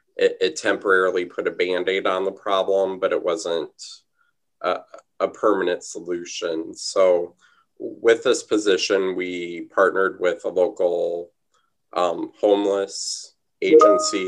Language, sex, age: English, male, 20-39